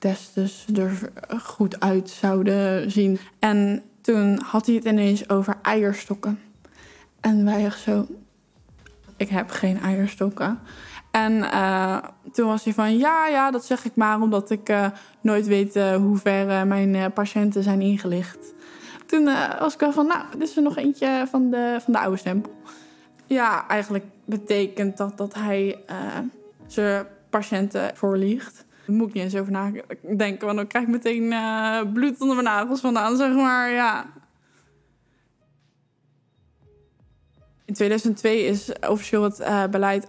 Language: Dutch